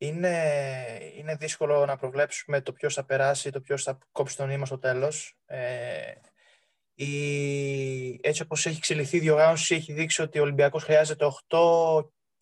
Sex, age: male, 20-39